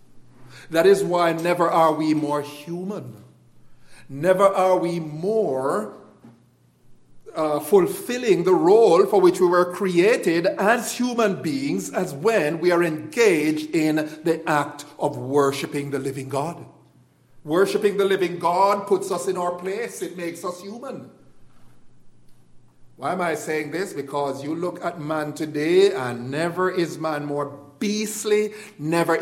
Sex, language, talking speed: male, English, 140 wpm